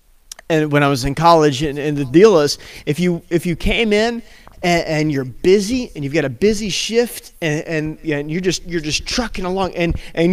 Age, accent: 30-49, American